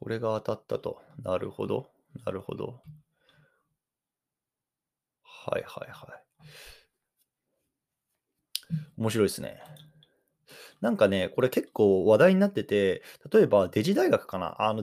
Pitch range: 100-155 Hz